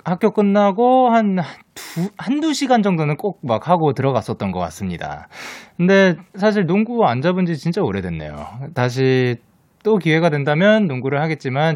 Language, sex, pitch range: Korean, male, 125-200 Hz